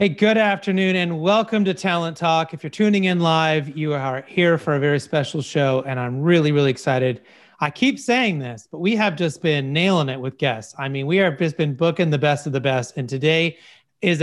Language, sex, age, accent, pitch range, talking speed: English, male, 30-49, American, 140-190 Hz, 230 wpm